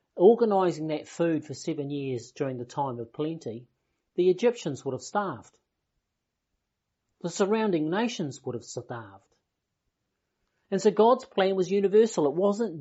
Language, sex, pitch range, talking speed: English, male, 130-180 Hz, 140 wpm